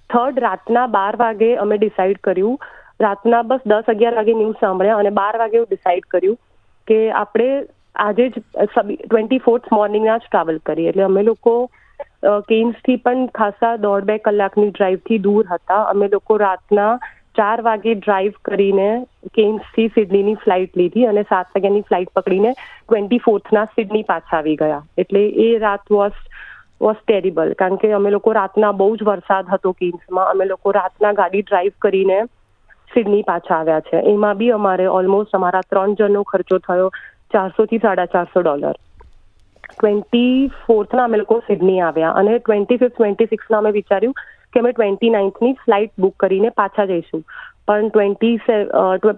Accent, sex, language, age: native, female, Gujarati, 30-49